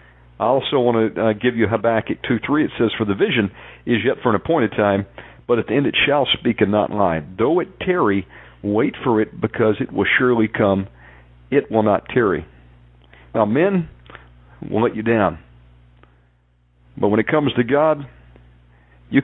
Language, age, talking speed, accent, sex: English, 50-69, 185 wpm, American, male